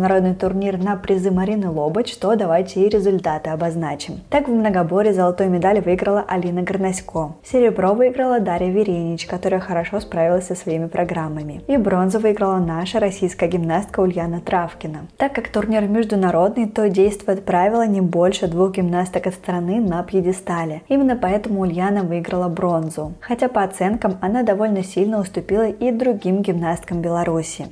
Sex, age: female, 20-39